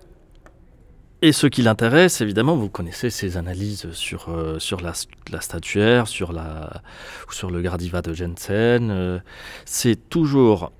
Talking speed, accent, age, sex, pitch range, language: 140 wpm, French, 30-49, male, 95-125 Hz, French